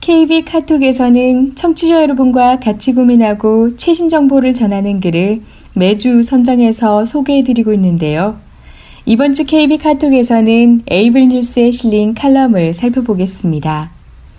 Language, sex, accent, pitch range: Korean, female, native, 190-260 Hz